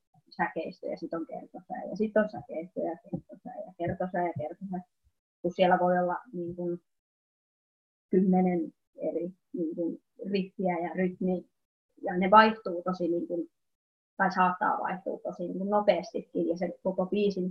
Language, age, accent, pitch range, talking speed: Finnish, 20-39, native, 175-210 Hz, 145 wpm